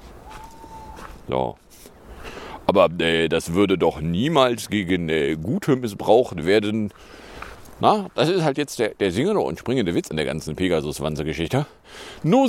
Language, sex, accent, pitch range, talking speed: German, male, German, 95-140 Hz, 135 wpm